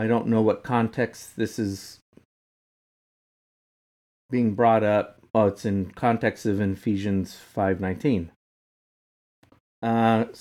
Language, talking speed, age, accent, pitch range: English, 100 wpm, 40-59, American, 105-120 Hz